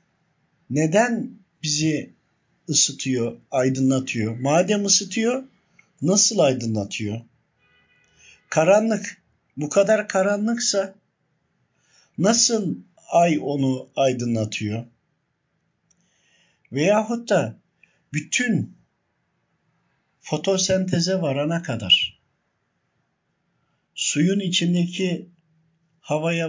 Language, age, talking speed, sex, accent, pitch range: Turkish, 60-79, 55 wpm, male, native, 140-180 Hz